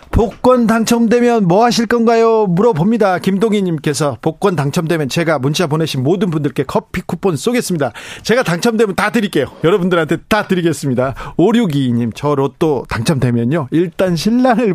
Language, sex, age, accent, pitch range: Korean, male, 40-59, native, 140-205 Hz